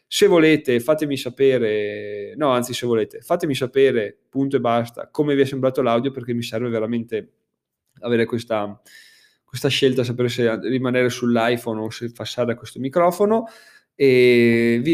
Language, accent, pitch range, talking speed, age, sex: Italian, native, 120-155 Hz, 155 wpm, 20-39, male